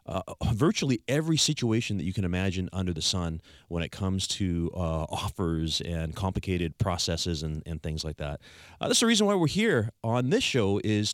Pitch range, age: 90-125 Hz, 30-49